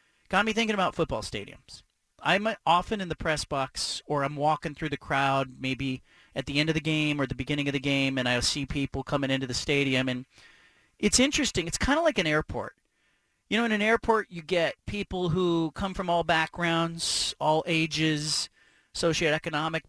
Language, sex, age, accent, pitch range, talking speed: English, male, 40-59, American, 150-195 Hz, 195 wpm